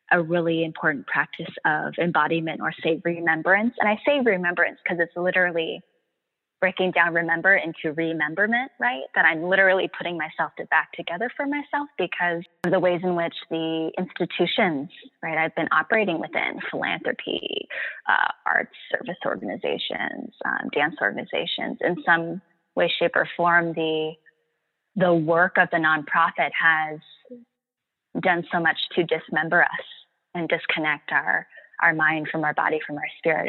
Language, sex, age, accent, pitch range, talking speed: English, female, 20-39, American, 165-200 Hz, 150 wpm